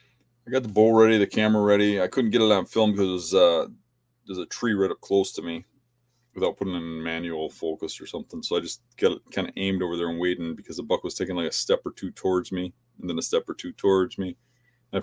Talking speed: 260 wpm